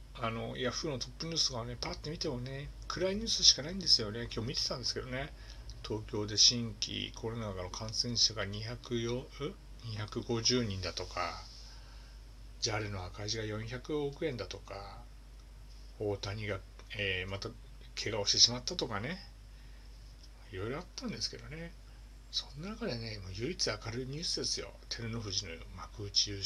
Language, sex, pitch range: Japanese, male, 100-120 Hz